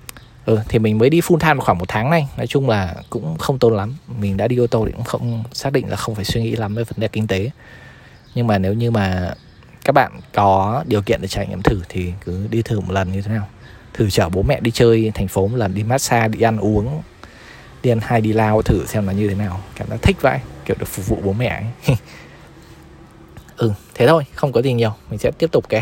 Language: Vietnamese